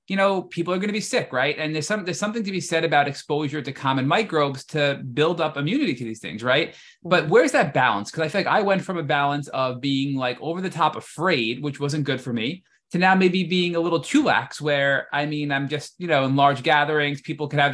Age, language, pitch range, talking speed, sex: 20-39, English, 135-170 Hz, 255 wpm, male